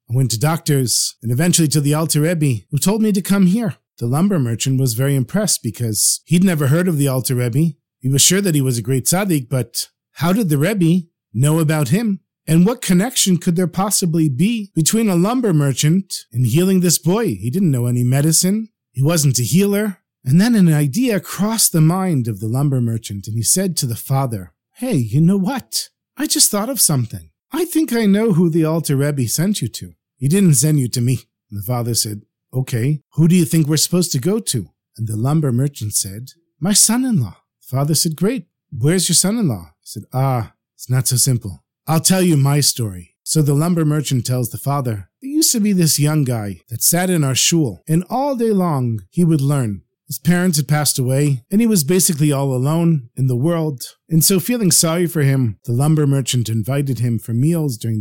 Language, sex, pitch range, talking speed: English, male, 125-180 Hz, 215 wpm